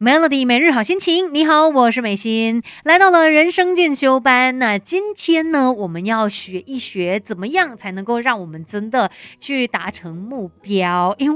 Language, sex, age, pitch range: Chinese, female, 30-49, 195-275 Hz